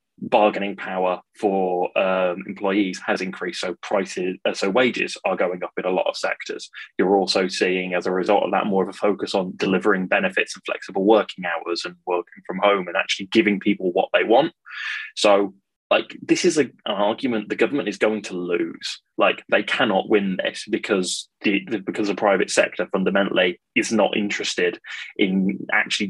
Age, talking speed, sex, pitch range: 20-39, 185 wpm, male, 95-105 Hz